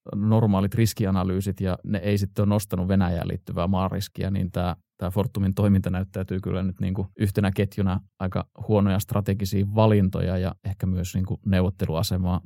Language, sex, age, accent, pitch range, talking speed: Finnish, male, 20-39, native, 95-110 Hz, 150 wpm